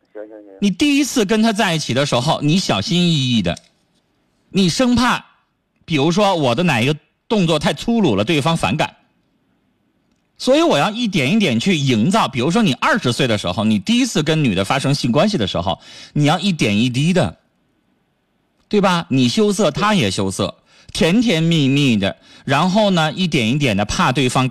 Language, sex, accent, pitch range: Chinese, male, native, 130-215 Hz